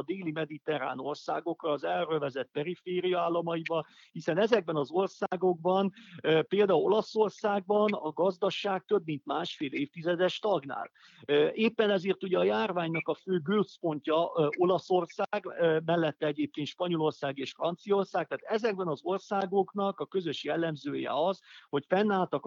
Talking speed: 115 wpm